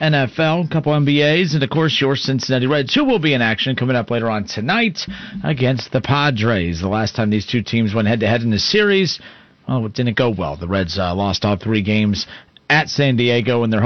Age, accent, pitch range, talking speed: 40-59, American, 110-155 Hz, 225 wpm